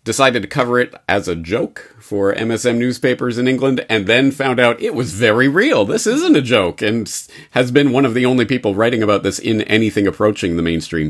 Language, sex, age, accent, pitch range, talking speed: English, male, 40-59, American, 110-145 Hz, 215 wpm